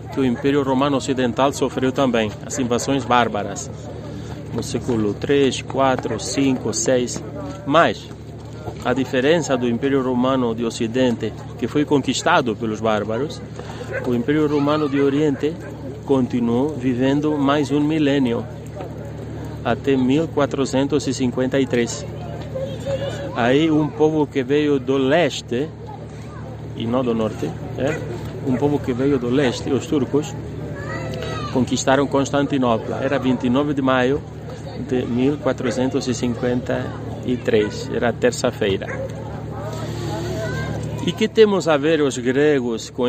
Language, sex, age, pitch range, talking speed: Portuguese, male, 30-49, 125-140 Hz, 110 wpm